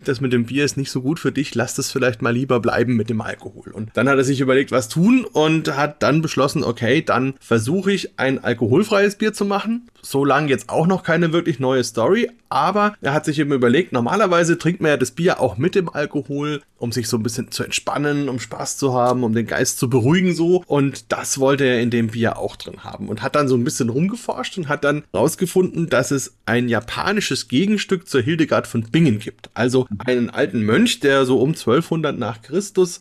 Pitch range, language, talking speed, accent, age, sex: 125-165 Hz, German, 225 wpm, German, 30-49, male